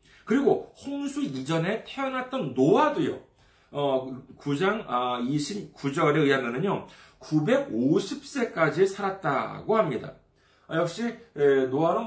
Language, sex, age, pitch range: Korean, male, 40-59, 130-205 Hz